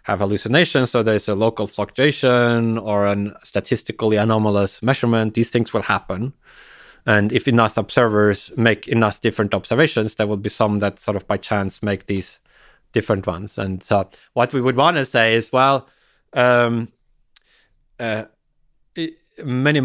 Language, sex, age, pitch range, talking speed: English, male, 30-49, 100-125 Hz, 150 wpm